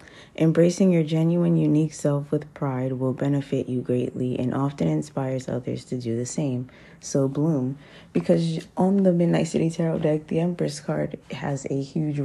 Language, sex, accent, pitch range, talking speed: English, female, American, 140-180 Hz, 165 wpm